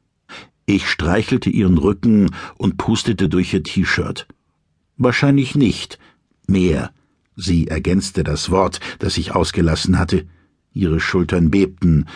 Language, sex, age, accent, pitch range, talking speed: German, male, 60-79, German, 85-130 Hz, 115 wpm